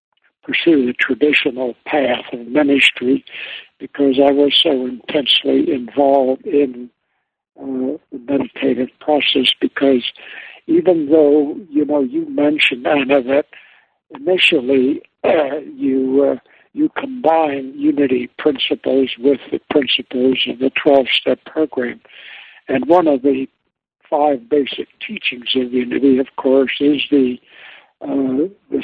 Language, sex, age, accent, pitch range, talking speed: English, male, 60-79, American, 135-155 Hz, 120 wpm